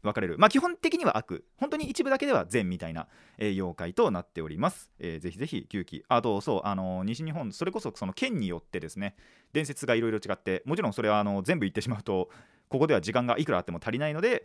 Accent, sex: native, male